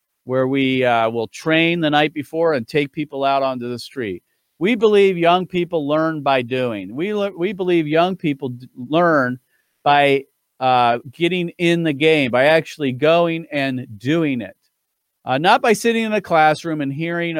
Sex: male